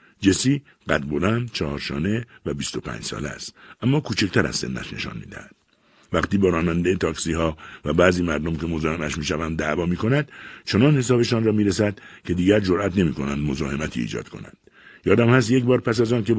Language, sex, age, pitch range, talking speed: Persian, male, 60-79, 85-125 Hz, 180 wpm